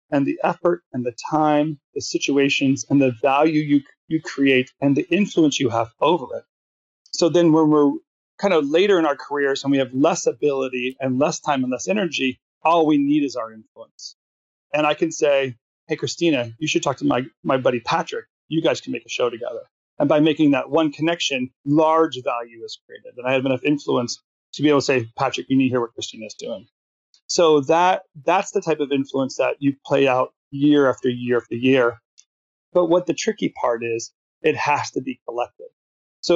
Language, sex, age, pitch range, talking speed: English, male, 40-59, 130-165 Hz, 210 wpm